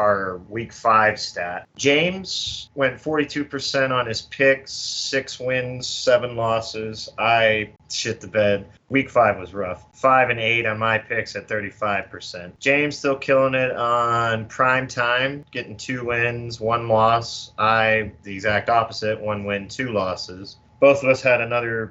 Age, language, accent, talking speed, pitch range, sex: 30-49, English, American, 150 wpm, 105-120 Hz, male